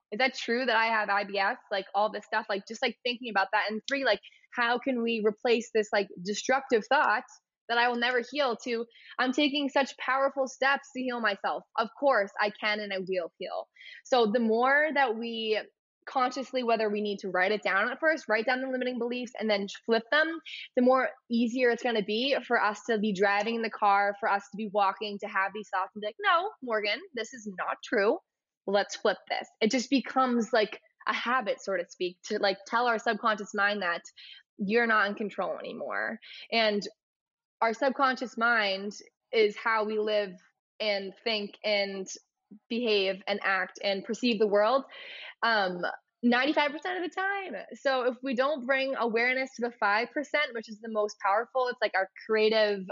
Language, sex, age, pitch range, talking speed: English, female, 20-39, 205-255 Hz, 195 wpm